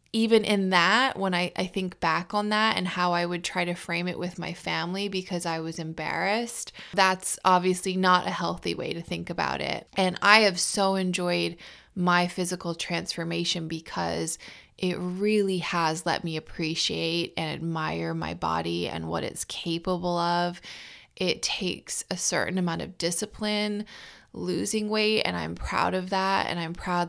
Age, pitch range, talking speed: 20-39, 165-190 Hz, 170 wpm